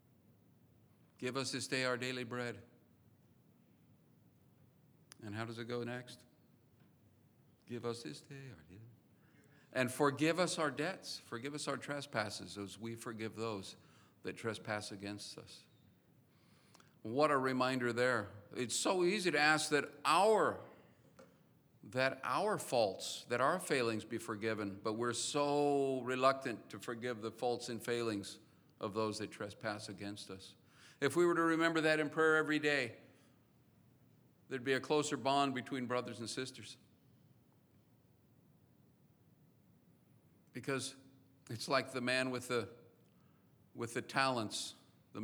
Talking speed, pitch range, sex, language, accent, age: 135 wpm, 115-140 Hz, male, English, American, 50-69